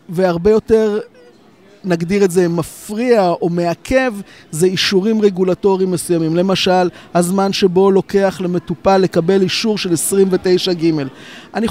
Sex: male